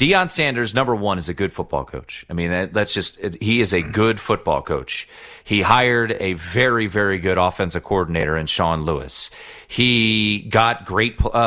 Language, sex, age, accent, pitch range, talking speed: English, male, 30-49, American, 100-140 Hz, 180 wpm